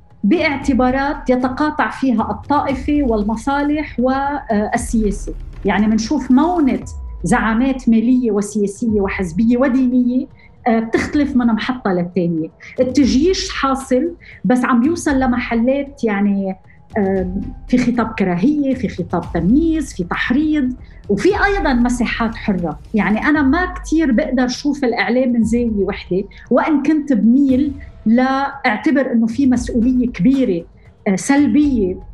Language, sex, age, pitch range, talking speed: Arabic, female, 40-59, 220-275 Hz, 105 wpm